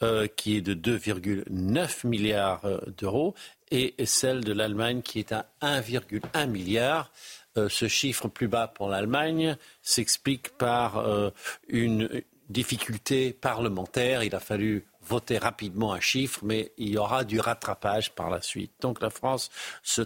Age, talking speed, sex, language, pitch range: 60-79, 140 wpm, male, French, 105-130 Hz